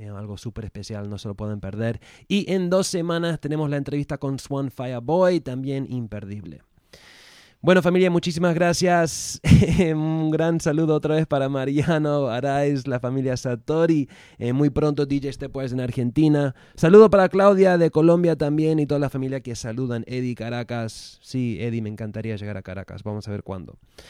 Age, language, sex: 20-39, English, male